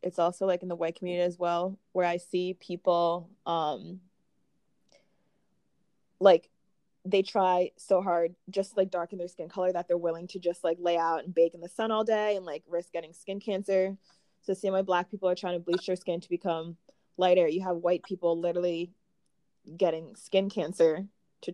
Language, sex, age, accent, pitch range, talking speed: English, female, 20-39, American, 170-190 Hz, 195 wpm